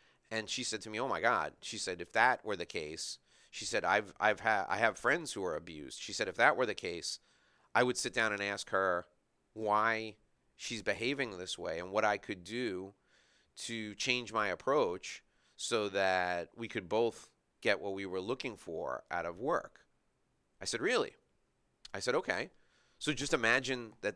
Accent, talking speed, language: American, 195 wpm, English